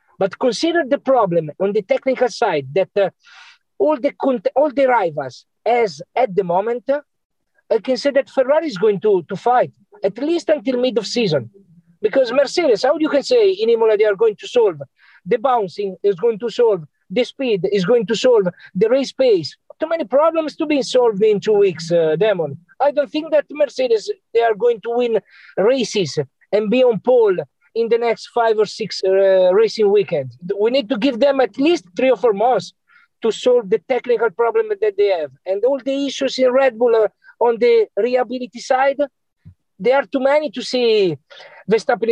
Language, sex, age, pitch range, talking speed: English, male, 50-69, 205-280 Hz, 195 wpm